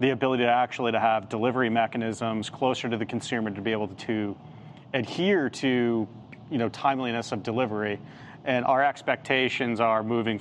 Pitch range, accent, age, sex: 110-130 Hz, American, 30-49, male